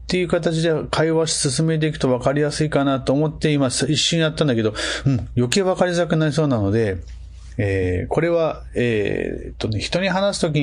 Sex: male